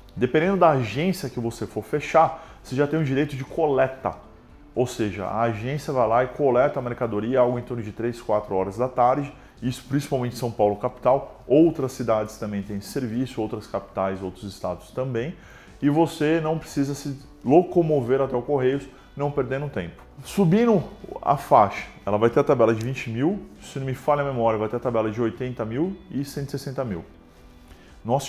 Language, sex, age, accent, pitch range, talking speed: Portuguese, male, 20-39, Brazilian, 105-140 Hz, 190 wpm